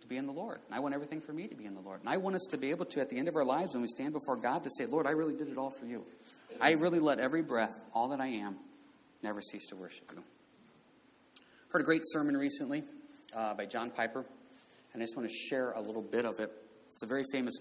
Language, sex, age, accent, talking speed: English, male, 40-59, American, 280 wpm